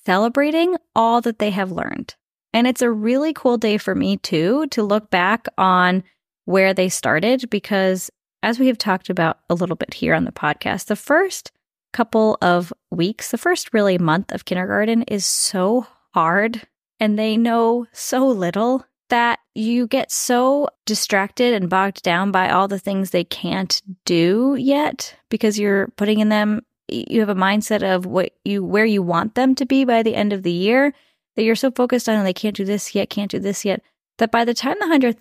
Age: 20-39